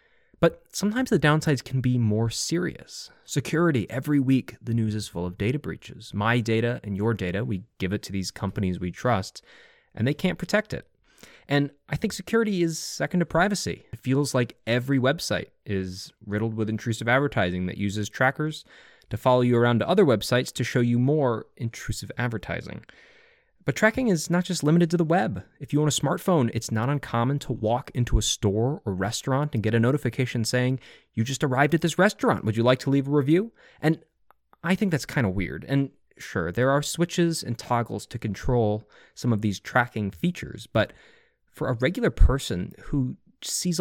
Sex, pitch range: male, 110-165 Hz